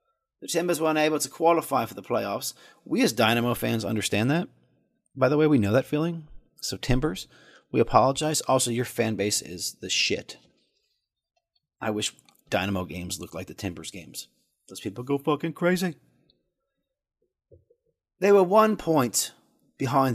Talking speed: 155 wpm